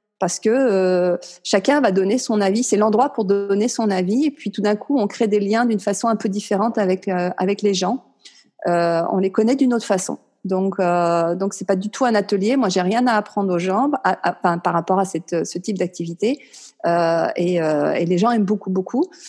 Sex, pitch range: female, 195-250 Hz